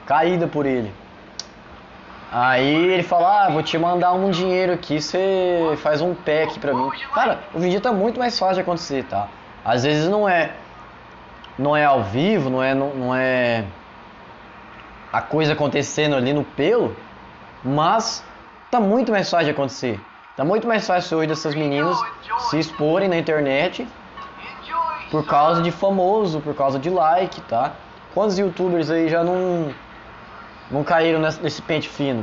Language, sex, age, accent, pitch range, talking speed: Portuguese, male, 20-39, Brazilian, 150-205 Hz, 155 wpm